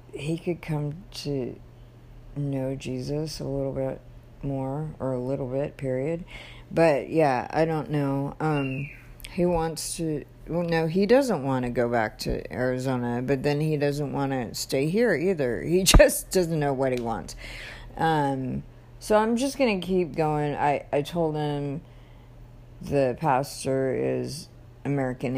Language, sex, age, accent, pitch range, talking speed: English, female, 50-69, American, 120-160 Hz, 155 wpm